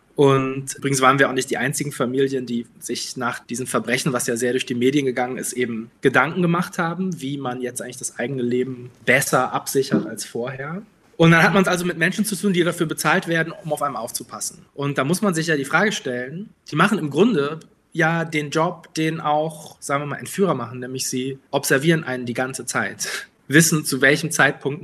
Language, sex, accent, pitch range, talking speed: German, male, German, 130-165 Hz, 215 wpm